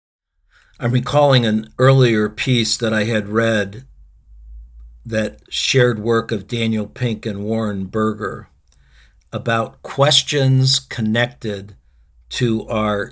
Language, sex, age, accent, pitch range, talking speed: English, male, 60-79, American, 95-120 Hz, 105 wpm